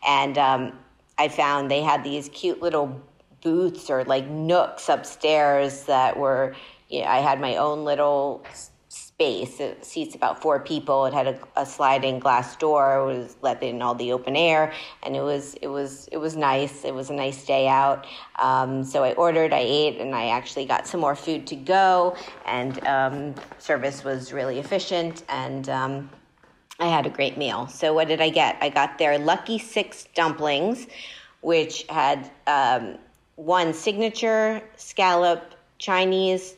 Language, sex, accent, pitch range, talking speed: English, female, American, 135-170 Hz, 170 wpm